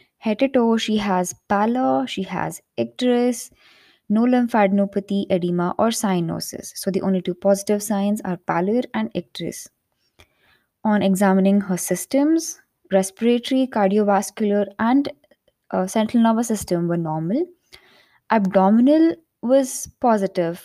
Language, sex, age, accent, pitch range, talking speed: English, female, 20-39, Indian, 190-245 Hz, 110 wpm